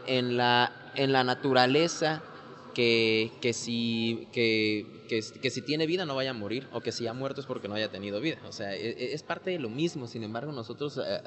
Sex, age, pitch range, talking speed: male, 20-39, 125-170 Hz, 210 wpm